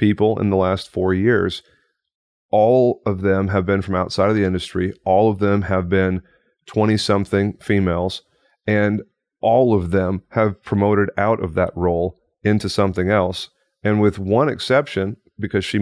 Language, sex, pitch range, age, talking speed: English, male, 90-110 Hz, 30-49, 165 wpm